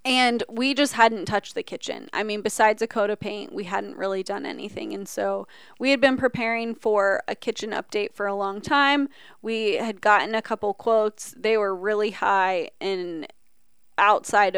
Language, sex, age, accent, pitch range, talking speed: English, female, 20-39, American, 200-250 Hz, 185 wpm